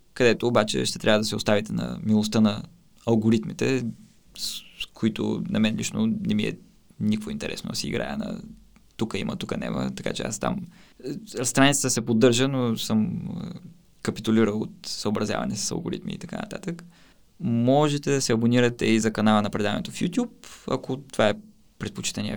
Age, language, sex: 20-39, Bulgarian, male